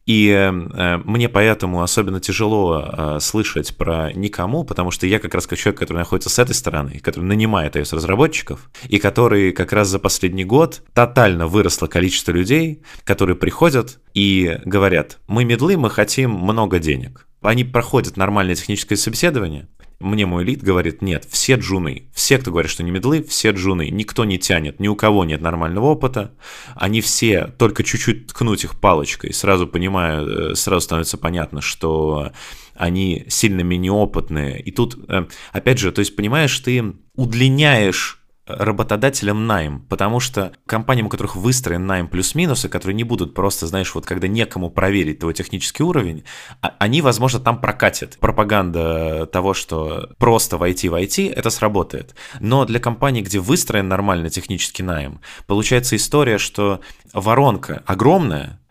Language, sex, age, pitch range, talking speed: Russian, male, 20-39, 90-115 Hz, 150 wpm